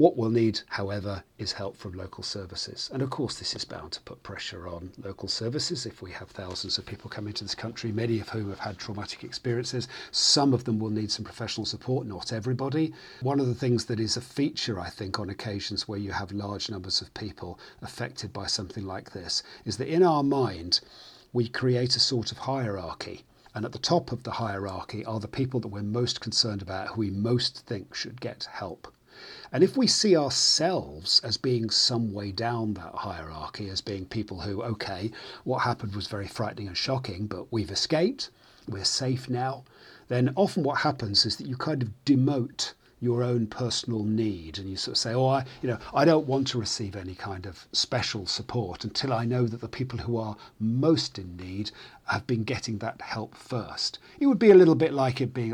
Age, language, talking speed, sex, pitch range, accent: 40-59, English, 210 wpm, male, 100-130 Hz, British